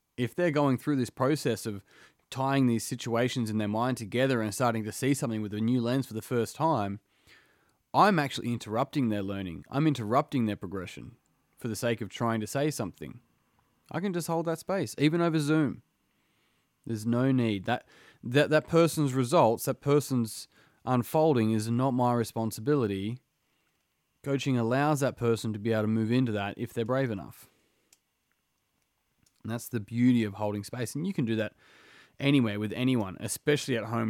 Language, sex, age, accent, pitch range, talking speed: English, male, 20-39, Australian, 105-135 Hz, 180 wpm